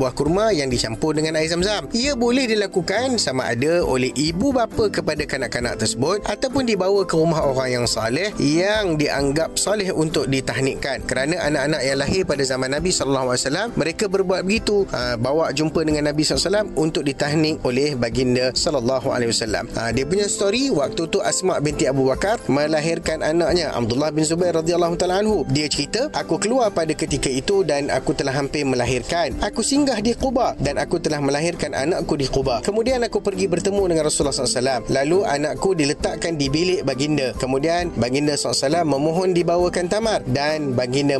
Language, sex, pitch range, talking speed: Malay, male, 135-185 Hz, 165 wpm